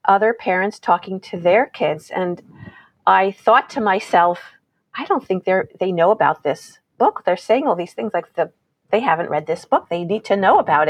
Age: 40-59